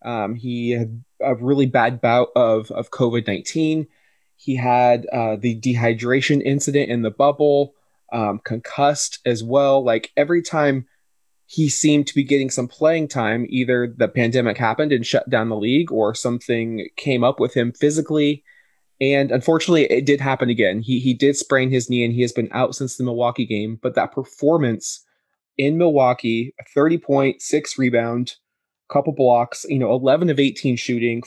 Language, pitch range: English, 120-140 Hz